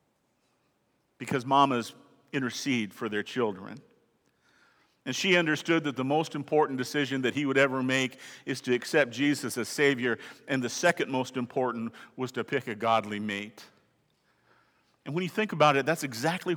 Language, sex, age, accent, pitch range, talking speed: English, male, 50-69, American, 125-175 Hz, 160 wpm